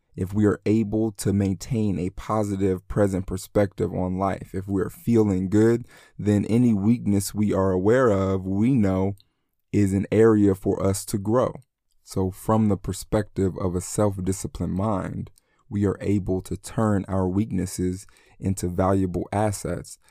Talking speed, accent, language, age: 150 wpm, American, English, 20-39